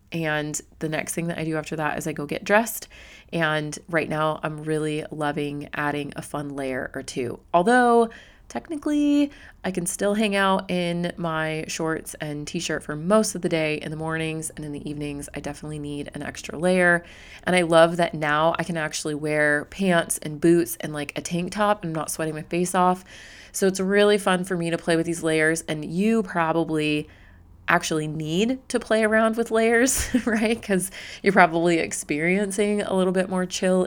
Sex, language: female, English